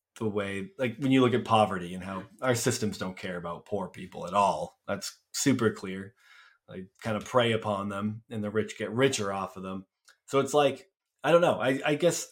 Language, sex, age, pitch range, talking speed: English, male, 20-39, 105-130 Hz, 225 wpm